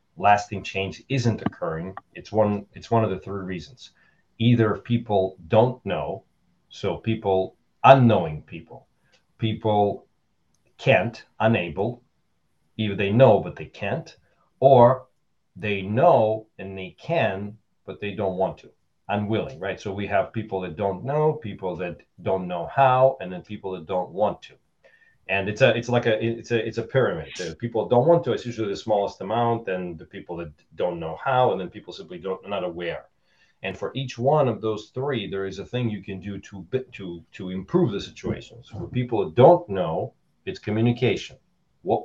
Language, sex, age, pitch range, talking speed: English, male, 40-59, 95-120 Hz, 180 wpm